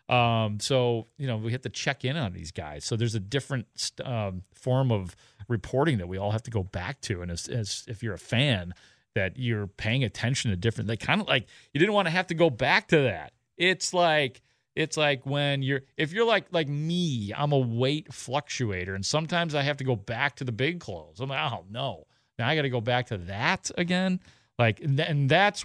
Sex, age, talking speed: male, 40-59, 230 wpm